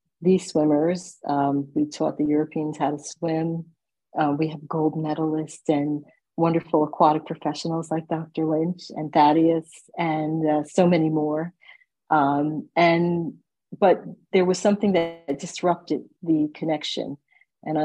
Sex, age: female, 50-69